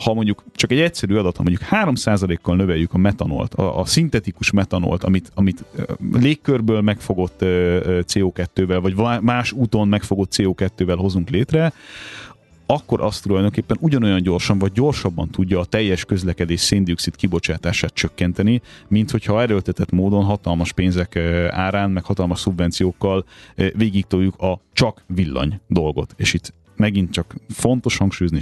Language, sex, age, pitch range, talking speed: Hungarian, male, 30-49, 90-115 Hz, 130 wpm